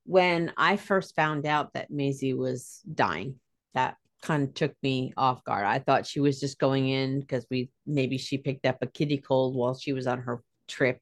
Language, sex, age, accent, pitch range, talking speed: English, female, 40-59, American, 135-170 Hz, 205 wpm